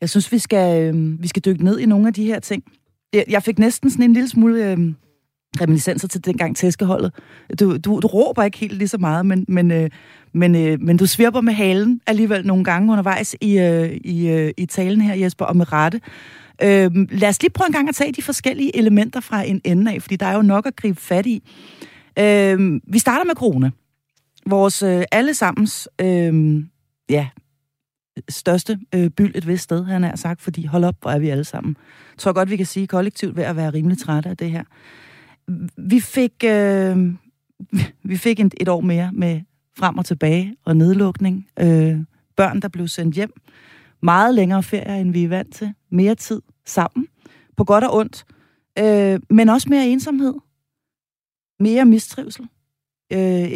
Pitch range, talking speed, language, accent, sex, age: 170-215 Hz, 190 wpm, Danish, native, female, 30-49